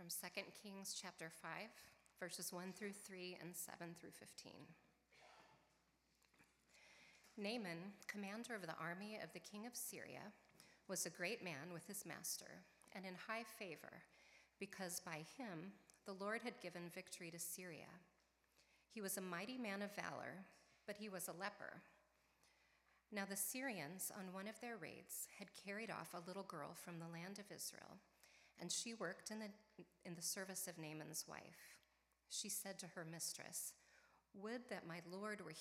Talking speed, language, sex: 160 wpm, English, female